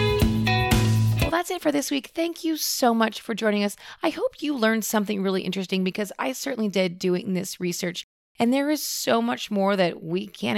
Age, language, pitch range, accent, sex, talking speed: 30-49, English, 180-235 Hz, American, female, 200 wpm